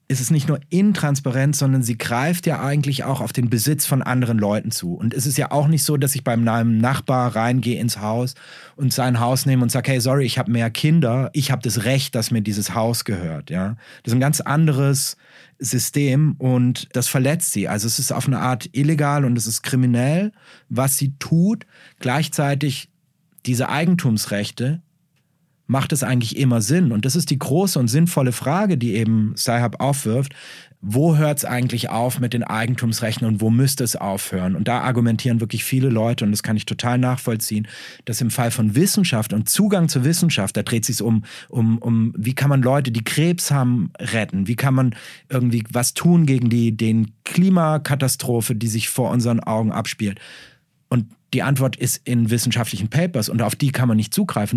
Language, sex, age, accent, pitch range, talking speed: German, male, 30-49, German, 115-145 Hz, 195 wpm